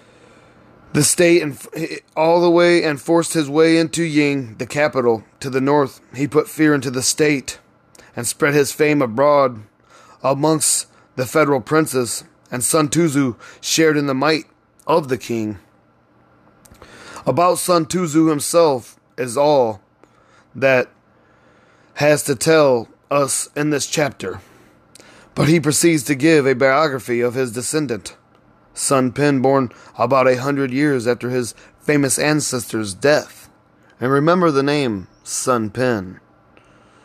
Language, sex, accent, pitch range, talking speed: English, male, American, 115-150 Hz, 135 wpm